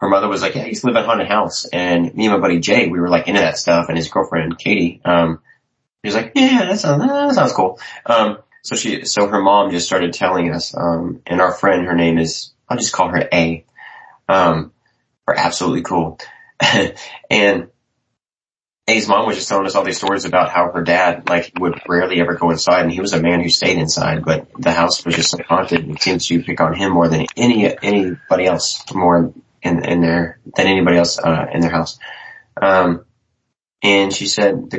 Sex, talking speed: male, 220 wpm